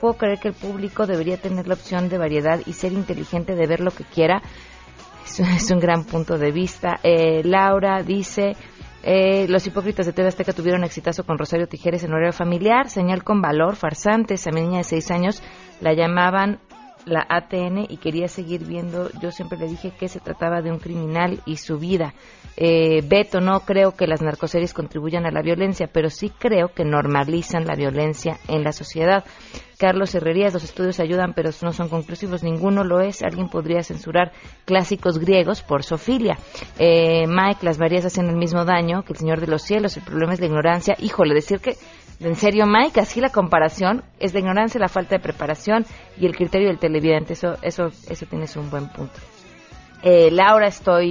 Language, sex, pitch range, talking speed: Spanish, female, 165-190 Hz, 195 wpm